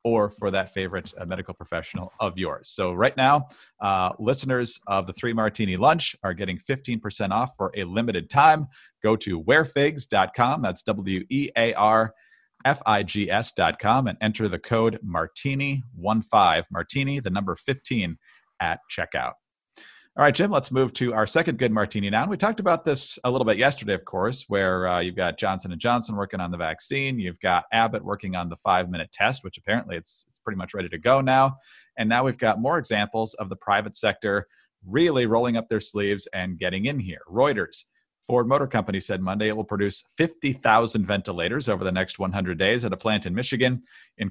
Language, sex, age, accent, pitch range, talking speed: English, male, 40-59, American, 95-125 Hz, 180 wpm